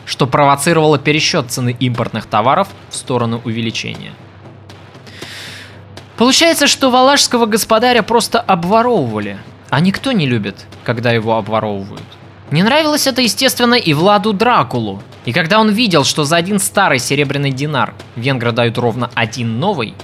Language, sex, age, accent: Russian, male, 20-39, native